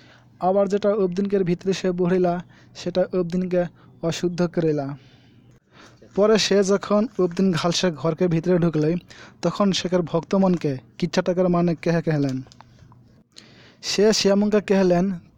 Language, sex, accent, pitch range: English, male, Indian, 155-185 Hz